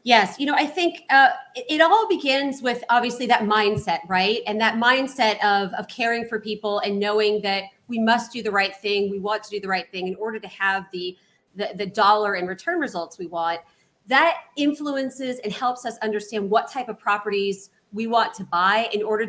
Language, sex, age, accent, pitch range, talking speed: English, female, 30-49, American, 195-240 Hz, 210 wpm